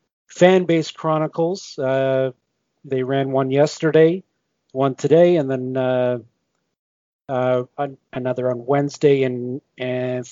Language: English